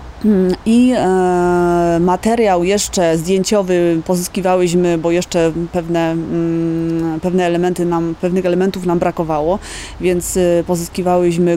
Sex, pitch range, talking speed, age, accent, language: female, 160-180 Hz, 90 wpm, 30-49, Polish, English